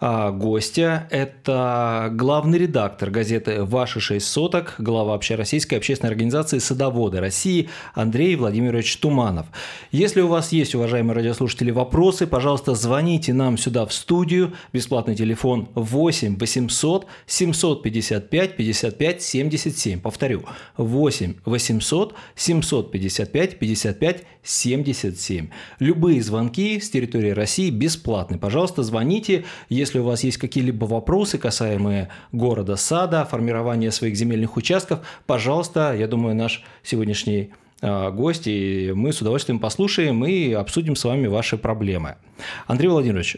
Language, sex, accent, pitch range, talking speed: Russian, male, native, 110-155 Hz, 120 wpm